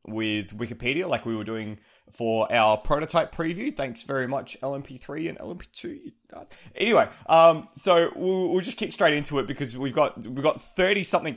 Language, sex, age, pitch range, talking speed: English, male, 20-39, 120-145 Hz, 175 wpm